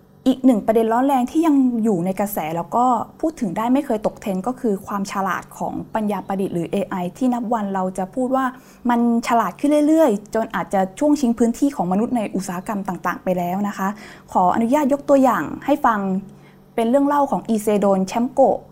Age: 20-39